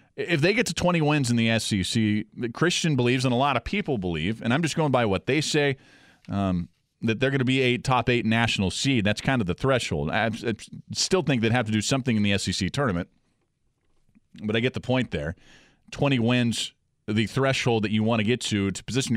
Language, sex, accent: English, male, American